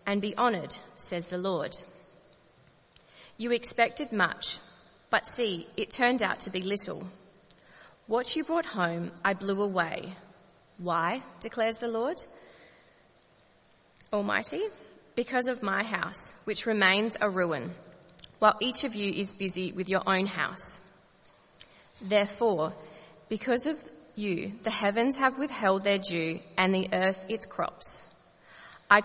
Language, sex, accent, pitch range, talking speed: English, female, Australian, 175-220 Hz, 130 wpm